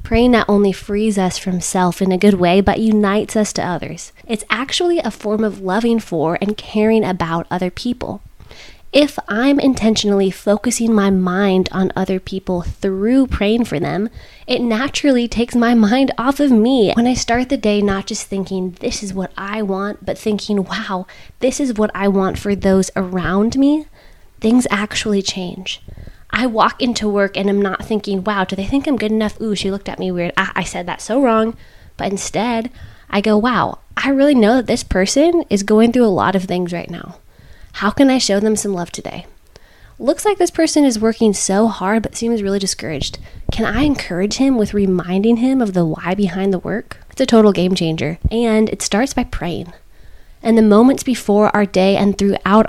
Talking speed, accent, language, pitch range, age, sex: 200 wpm, American, English, 195-235 Hz, 20-39, female